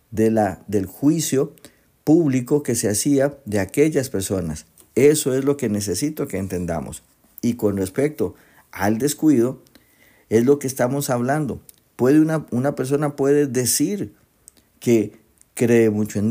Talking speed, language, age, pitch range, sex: 140 wpm, Spanish, 50-69, 105-140 Hz, male